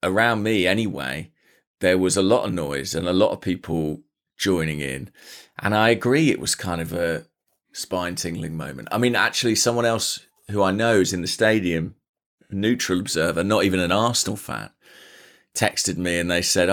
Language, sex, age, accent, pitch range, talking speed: English, male, 30-49, British, 90-110 Hz, 180 wpm